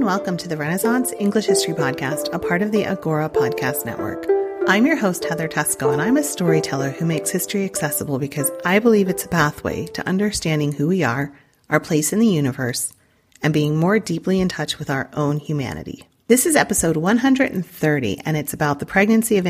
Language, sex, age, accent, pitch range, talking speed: English, female, 30-49, American, 150-215 Hz, 195 wpm